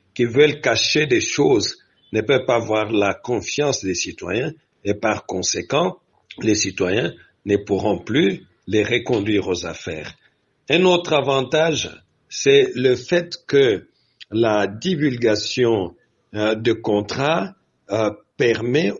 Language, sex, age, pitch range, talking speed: French, male, 60-79, 105-155 Hz, 115 wpm